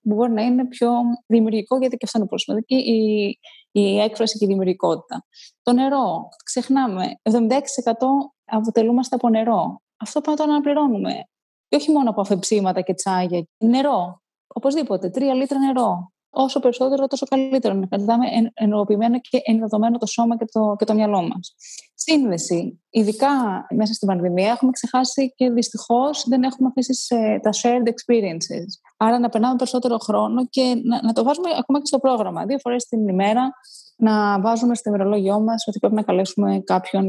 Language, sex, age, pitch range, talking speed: Greek, female, 20-39, 210-265 Hz, 160 wpm